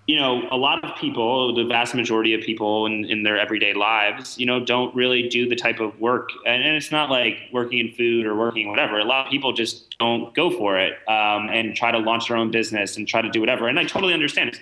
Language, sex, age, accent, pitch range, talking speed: English, male, 20-39, American, 110-125 Hz, 260 wpm